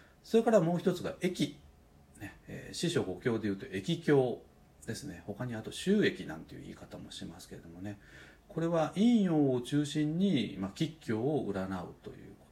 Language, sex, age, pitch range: Japanese, male, 40-59, 95-145 Hz